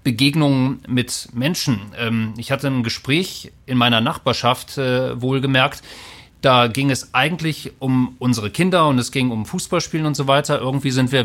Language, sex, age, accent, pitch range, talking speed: German, male, 40-59, German, 120-140 Hz, 155 wpm